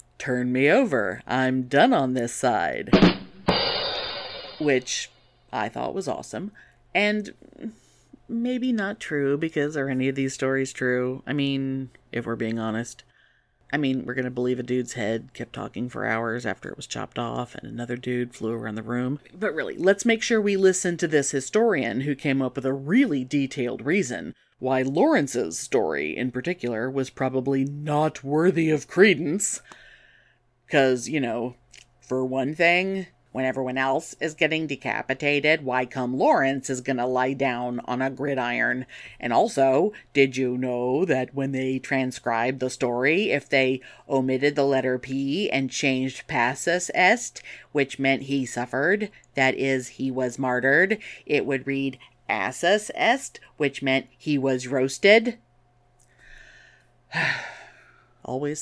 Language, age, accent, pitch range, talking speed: English, 40-59, American, 125-145 Hz, 150 wpm